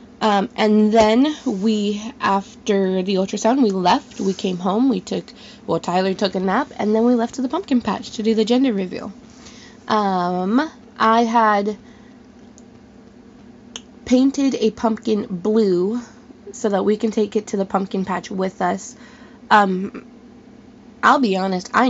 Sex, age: female, 20-39